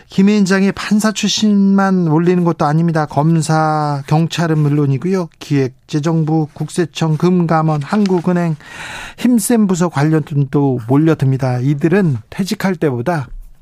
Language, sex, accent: Korean, male, native